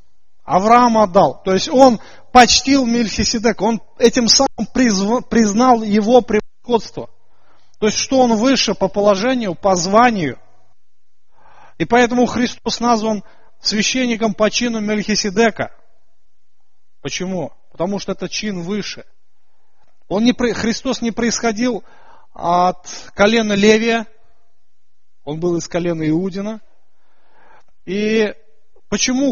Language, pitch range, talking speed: Russian, 175-230 Hz, 105 wpm